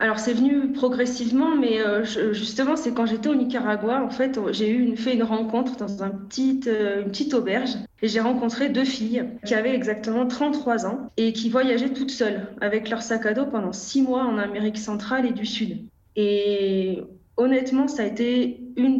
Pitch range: 210-250 Hz